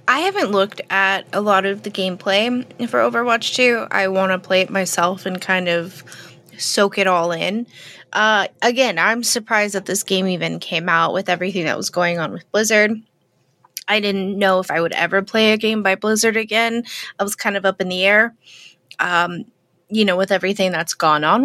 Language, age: English, 20-39